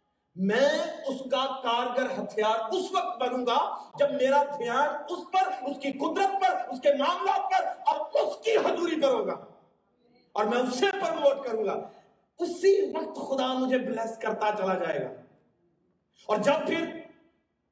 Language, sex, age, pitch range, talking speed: Urdu, male, 40-59, 250-335 Hz, 155 wpm